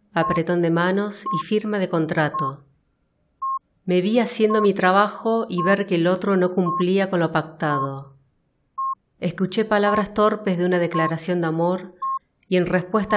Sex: female